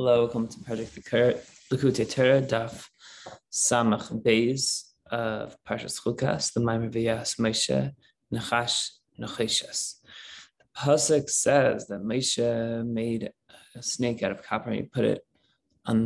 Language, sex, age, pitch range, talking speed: English, male, 20-39, 110-130 Hz, 120 wpm